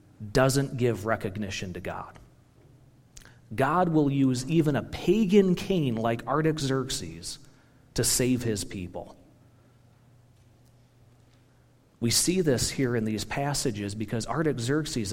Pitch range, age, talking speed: 115-145 Hz, 40-59, 105 wpm